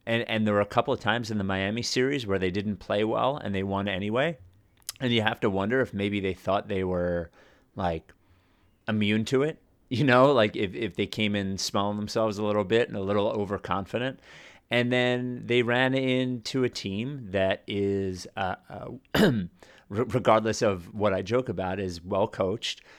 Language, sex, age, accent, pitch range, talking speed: English, male, 30-49, American, 95-115 Hz, 190 wpm